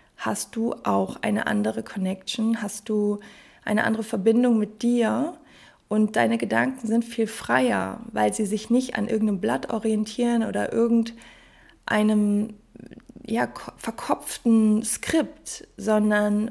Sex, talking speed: female, 115 wpm